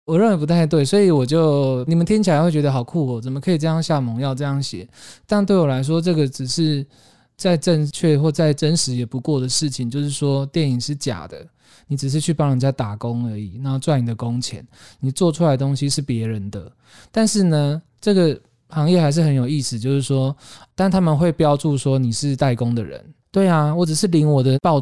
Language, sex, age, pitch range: Chinese, male, 20-39, 125-160 Hz